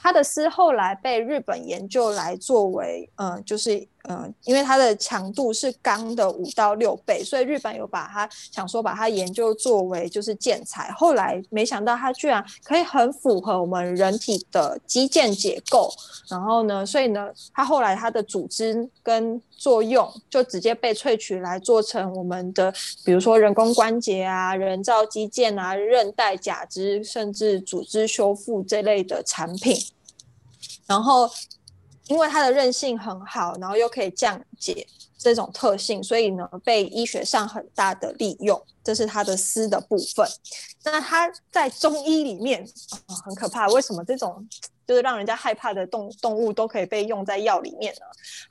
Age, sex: 20-39, female